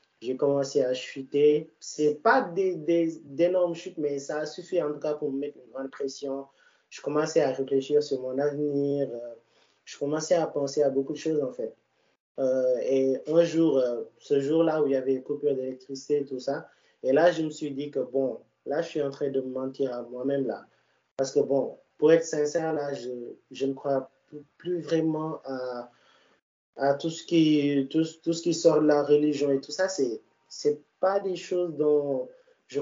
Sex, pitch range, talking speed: male, 135-160 Hz, 205 wpm